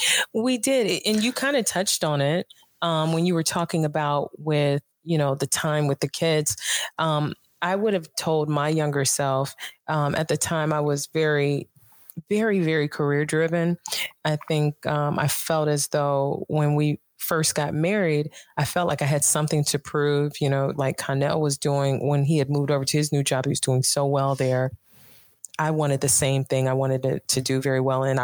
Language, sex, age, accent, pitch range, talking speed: English, female, 20-39, American, 140-155 Hz, 205 wpm